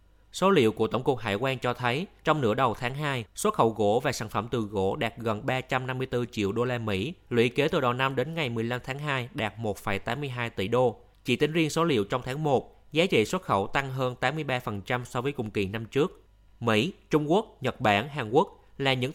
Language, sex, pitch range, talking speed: Vietnamese, male, 105-140 Hz, 230 wpm